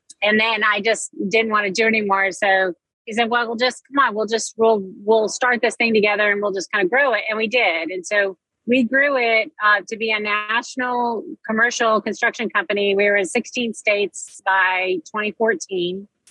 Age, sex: 30-49, female